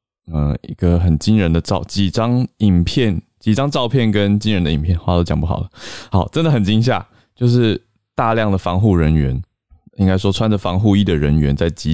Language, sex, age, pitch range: Chinese, male, 20-39, 85-110 Hz